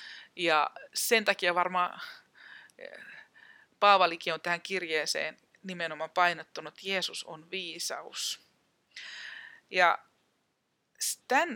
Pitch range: 170-220 Hz